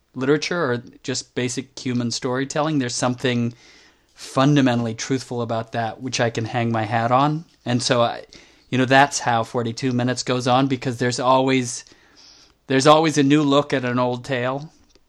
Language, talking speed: English, 165 wpm